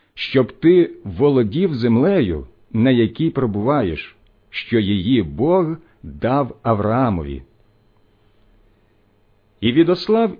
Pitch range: 100-155 Hz